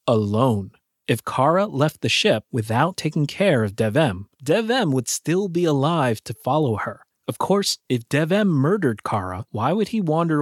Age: 30-49